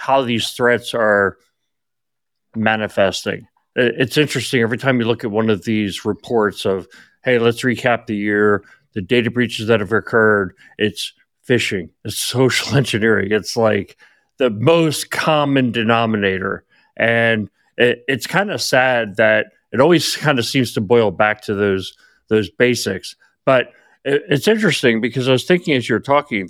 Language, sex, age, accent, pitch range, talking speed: English, male, 40-59, American, 105-130 Hz, 160 wpm